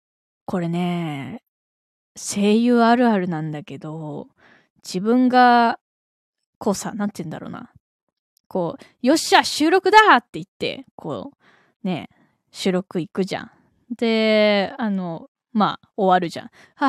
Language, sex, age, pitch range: Japanese, female, 20-39, 185-270 Hz